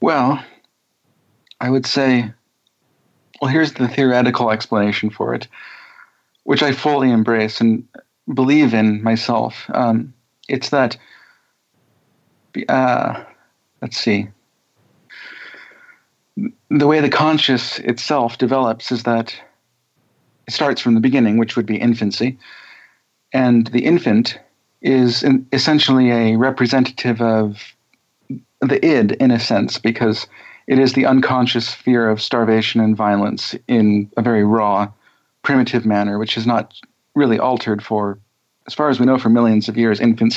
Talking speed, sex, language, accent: 130 wpm, male, English, American